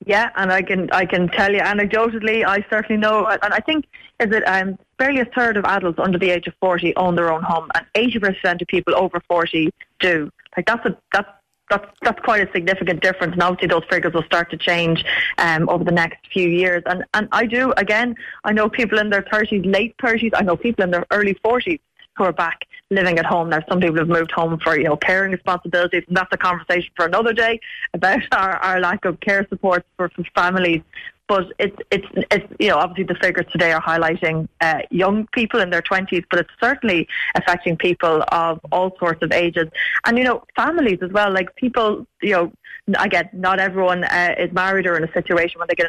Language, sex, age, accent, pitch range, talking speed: English, female, 20-39, Irish, 175-210 Hz, 220 wpm